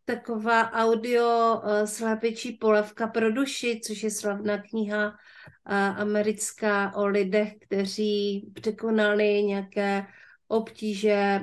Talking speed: 90 wpm